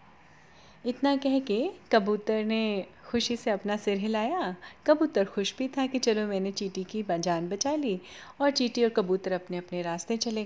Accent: native